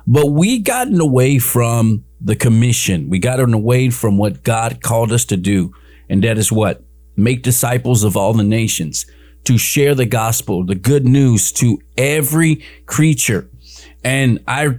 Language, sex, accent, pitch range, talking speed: English, male, American, 100-140 Hz, 160 wpm